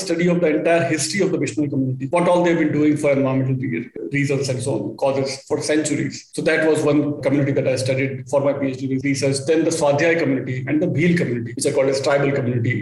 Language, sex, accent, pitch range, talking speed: English, male, Indian, 140-170 Hz, 230 wpm